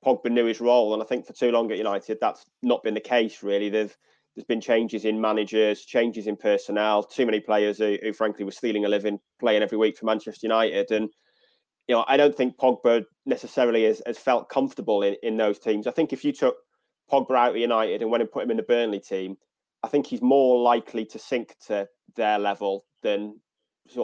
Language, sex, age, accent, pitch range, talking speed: English, male, 20-39, British, 105-120 Hz, 220 wpm